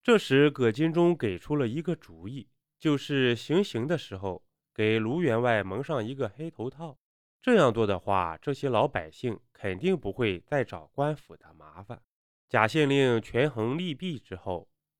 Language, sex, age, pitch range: Chinese, male, 20-39, 105-155 Hz